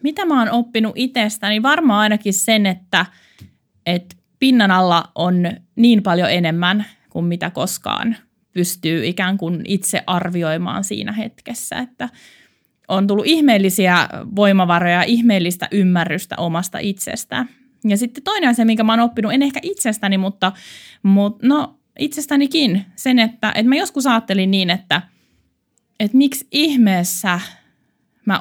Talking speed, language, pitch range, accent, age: 135 wpm, Finnish, 185-235 Hz, native, 20-39